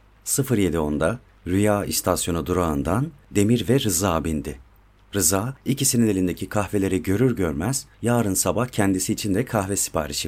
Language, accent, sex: Turkish, native, male